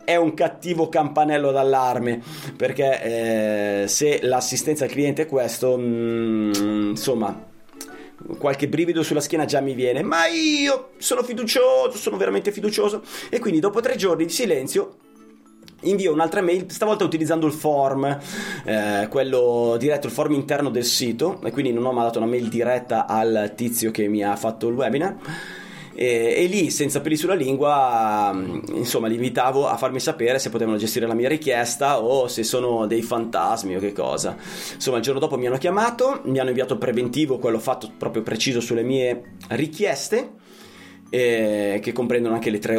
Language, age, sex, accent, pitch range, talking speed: Italian, 30-49, male, native, 115-155 Hz, 165 wpm